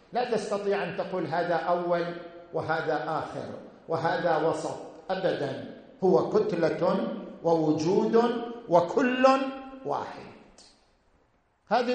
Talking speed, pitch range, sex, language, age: 85 wpm, 185-255 Hz, male, Arabic, 50-69